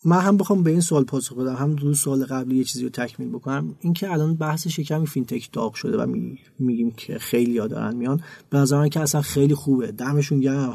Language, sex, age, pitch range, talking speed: Persian, male, 30-49, 130-160 Hz, 220 wpm